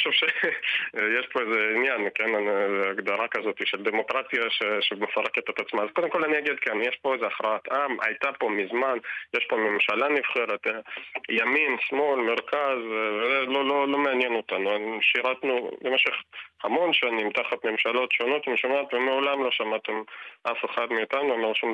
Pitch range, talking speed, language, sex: 110-165 Hz, 165 wpm, Hebrew, male